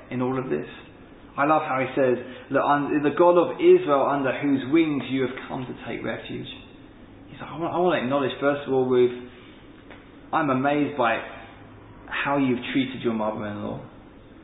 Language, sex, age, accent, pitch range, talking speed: English, male, 20-39, British, 125-170 Hz, 170 wpm